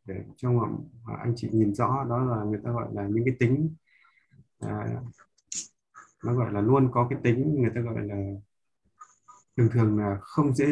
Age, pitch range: 20-39, 110-140 Hz